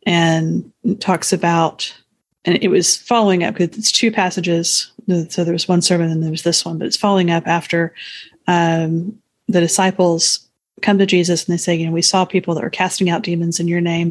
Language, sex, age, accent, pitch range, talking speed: English, female, 30-49, American, 170-190 Hz, 210 wpm